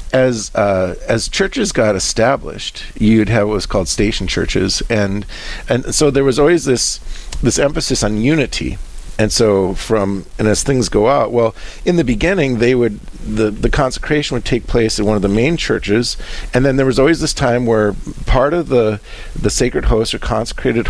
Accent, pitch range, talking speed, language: American, 100-125 Hz, 190 wpm, English